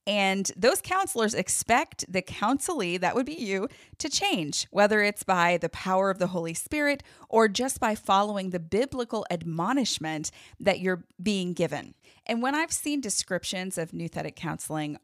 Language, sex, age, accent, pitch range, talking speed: English, female, 30-49, American, 165-225 Hz, 160 wpm